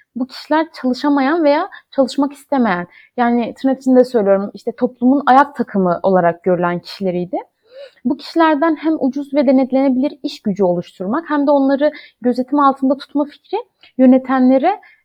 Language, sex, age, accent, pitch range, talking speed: Turkish, female, 30-49, native, 235-295 Hz, 135 wpm